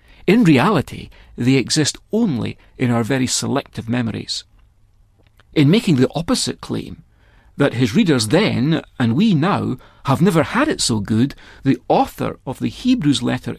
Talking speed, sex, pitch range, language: 150 wpm, male, 105-165 Hz, English